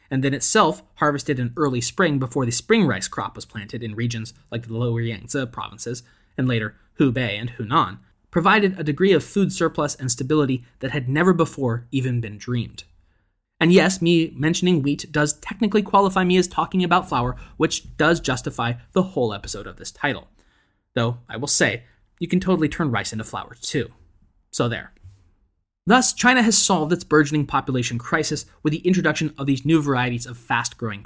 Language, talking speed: English, 180 wpm